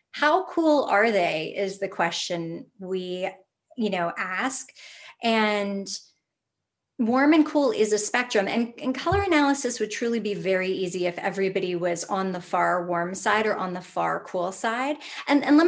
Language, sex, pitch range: English, female, 185-240 Hz